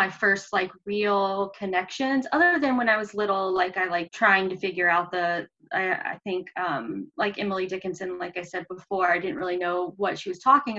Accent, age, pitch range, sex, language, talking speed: American, 20-39, 190-220 Hz, female, English, 210 wpm